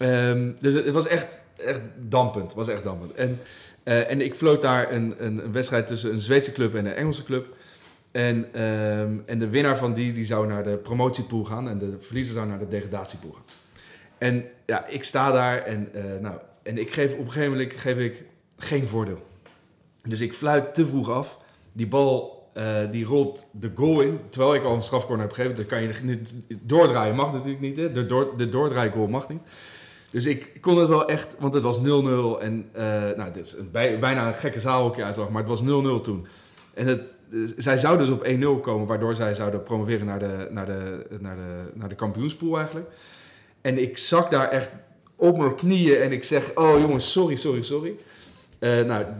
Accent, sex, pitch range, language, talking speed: Dutch, male, 110-140 Hz, Dutch, 210 wpm